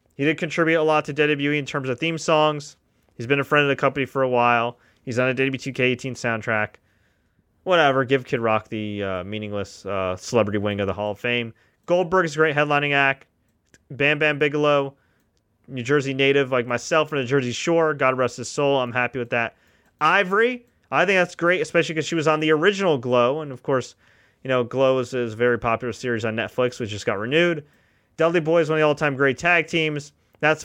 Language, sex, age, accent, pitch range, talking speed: English, male, 30-49, American, 115-150 Hz, 210 wpm